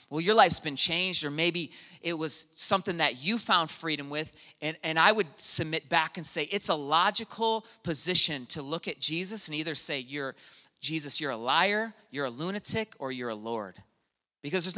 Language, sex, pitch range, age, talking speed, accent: English, male, 155-220 Hz, 30-49, 195 wpm, American